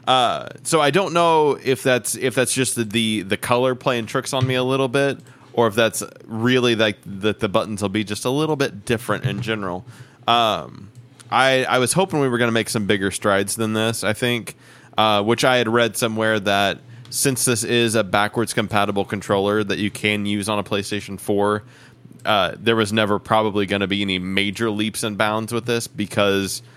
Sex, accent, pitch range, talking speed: male, American, 100-120 Hz, 205 wpm